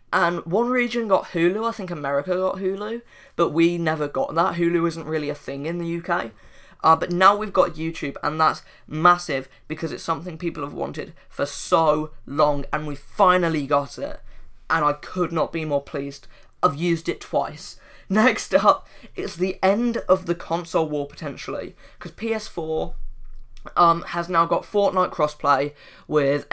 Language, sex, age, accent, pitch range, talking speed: English, female, 10-29, British, 150-185 Hz, 170 wpm